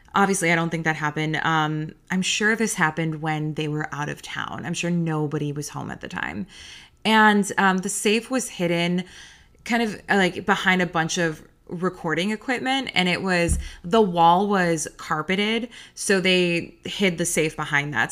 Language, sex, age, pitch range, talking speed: English, female, 20-39, 165-200 Hz, 180 wpm